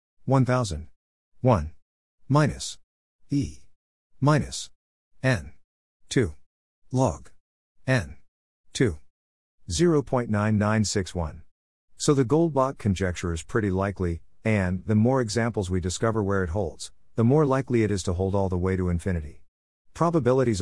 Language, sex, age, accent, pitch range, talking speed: English, male, 50-69, American, 85-125 Hz, 115 wpm